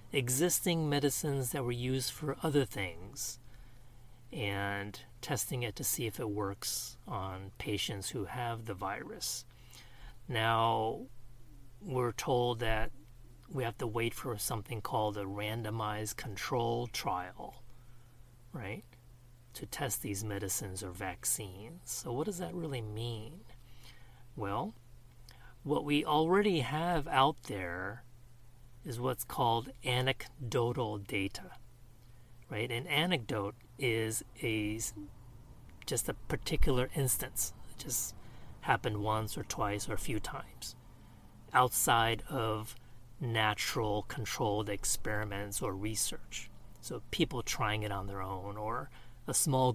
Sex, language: male, English